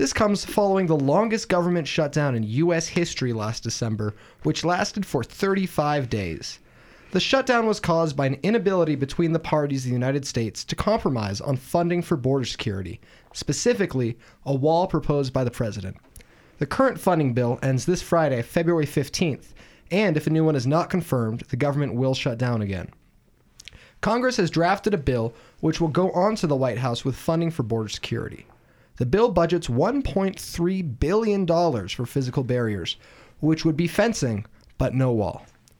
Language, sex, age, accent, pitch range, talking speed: English, male, 30-49, American, 120-175 Hz, 170 wpm